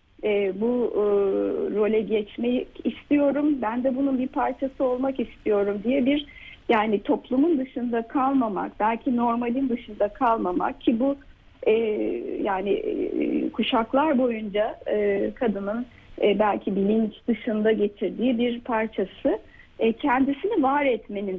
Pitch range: 210-275 Hz